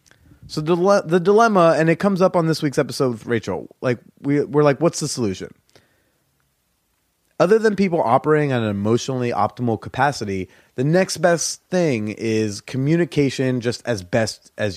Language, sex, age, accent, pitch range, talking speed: English, male, 30-49, American, 115-165 Hz, 160 wpm